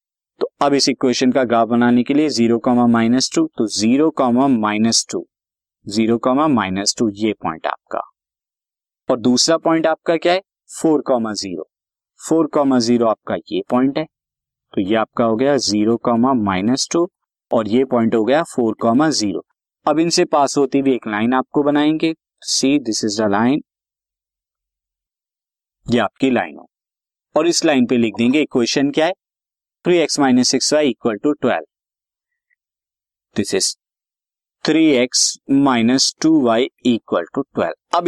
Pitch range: 120-150 Hz